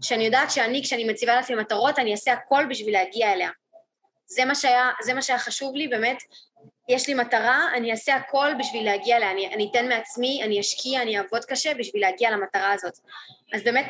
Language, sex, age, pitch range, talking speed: Hebrew, female, 20-39, 210-245 Hz, 200 wpm